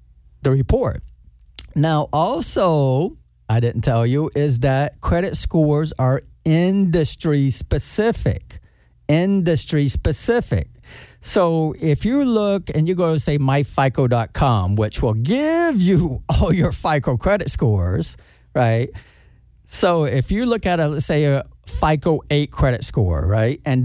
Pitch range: 120-160 Hz